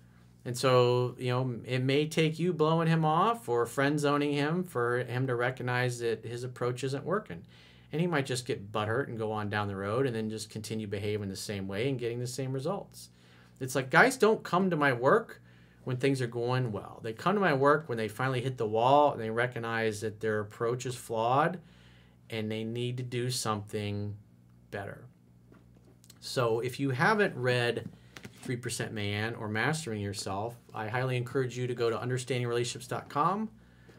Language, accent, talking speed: English, American, 190 wpm